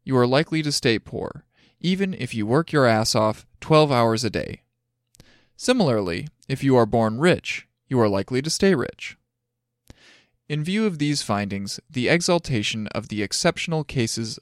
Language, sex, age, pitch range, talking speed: English, male, 20-39, 110-150 Hz, 165 wpm